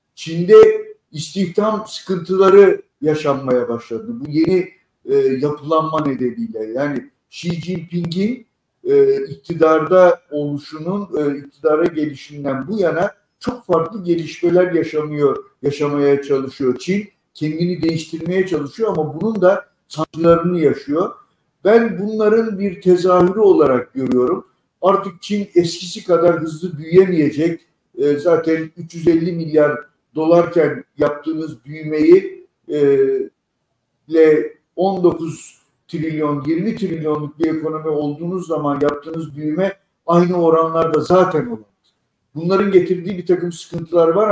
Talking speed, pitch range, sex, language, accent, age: 100 wpm, 150-190 Hz, male, Turkish, native, 50-69